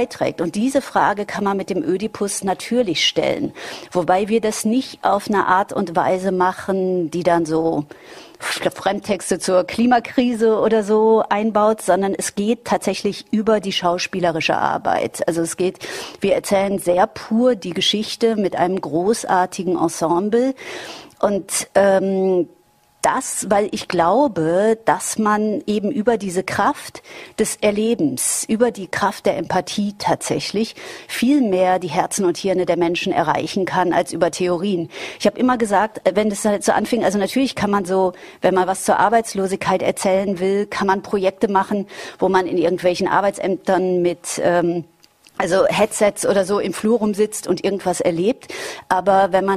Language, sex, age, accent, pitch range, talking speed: German, female, 40-59, German, 180-215 Hz, 155 wpm